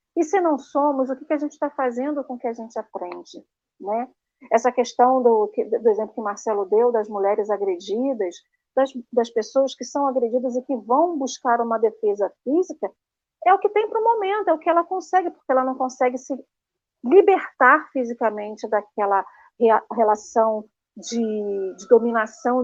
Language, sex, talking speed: Portuguese, female, 175 wpm